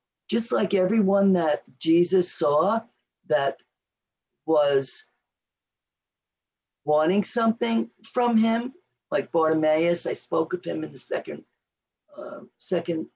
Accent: American